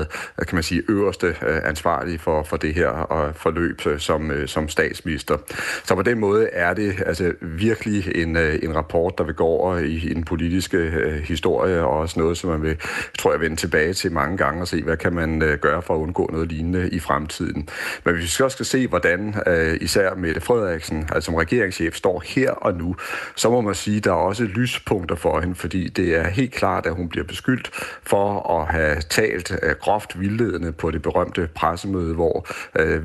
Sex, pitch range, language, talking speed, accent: male, 80-95 Hz, Danish, 195 wpm, native